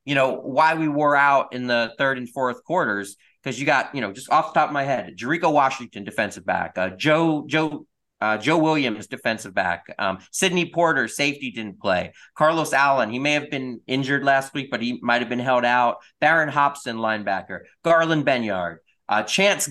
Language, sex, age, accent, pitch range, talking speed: English, male, 30-49, American, 125-165 Hz, 200 wpm